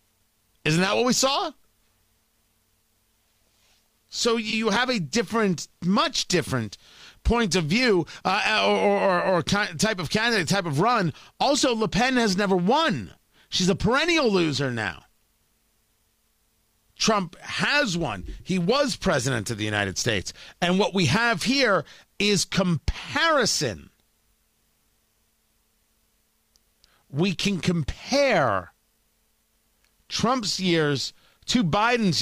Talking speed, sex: 115 wpm, male